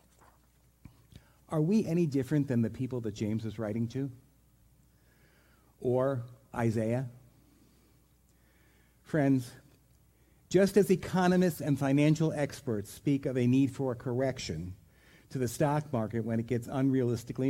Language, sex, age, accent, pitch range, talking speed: English, male, 50-69, American, 105-145 Hz, 125 wpm